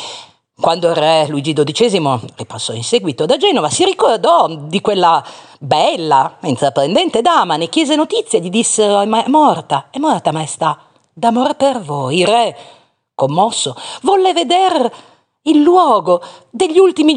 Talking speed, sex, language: 145 wpm, female, Italian